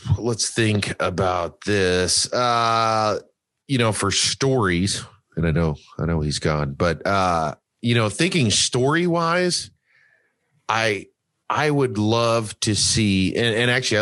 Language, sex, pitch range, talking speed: English, male, 85-110 Hz, 135 wpm